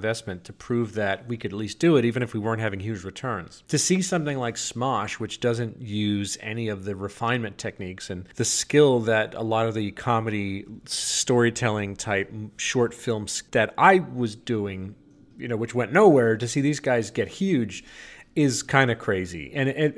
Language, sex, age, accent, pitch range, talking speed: English, male, 40-59, American, 105-140 Hz, 190 wpm